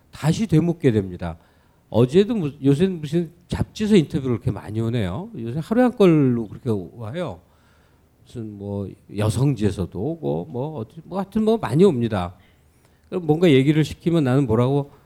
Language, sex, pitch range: Korean, male, 115-170 Hz